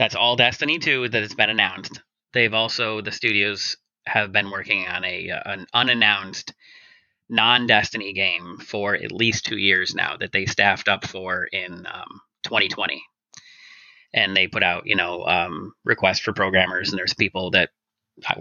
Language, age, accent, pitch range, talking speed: English, 30-49, American, 100-115 Hz, 165 wpm